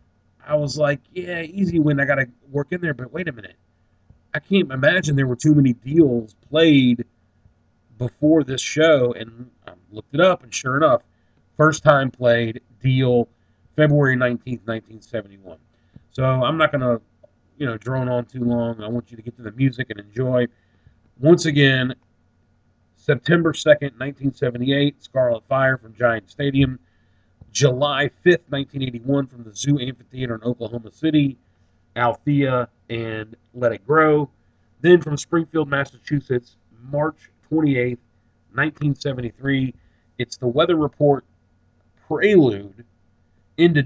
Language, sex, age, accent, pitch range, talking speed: English, male, 40-59, American, 110-145 Hz, 140 wpm